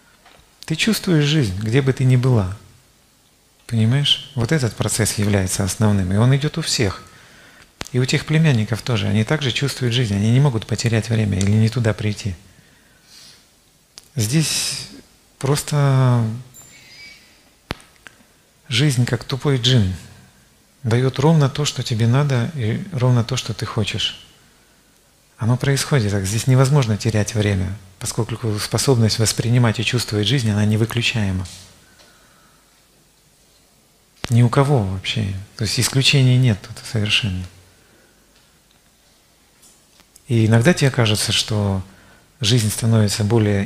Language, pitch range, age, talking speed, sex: Russian, 105-130 Hz, 40-59, 120 wpm, male